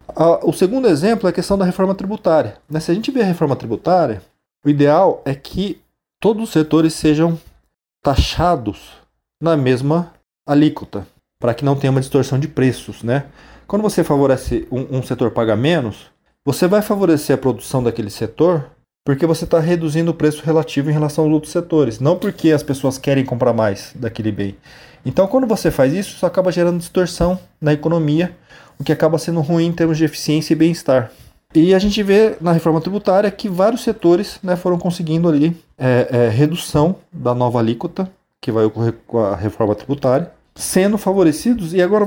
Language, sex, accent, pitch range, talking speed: Portuguese, male, Brazilian, 130-175 Hz, 175 wpm